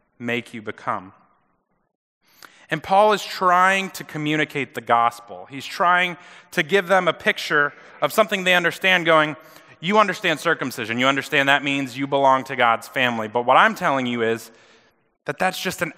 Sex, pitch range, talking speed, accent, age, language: male, 120-170 Hz, 170 wpm, American, 30-49, English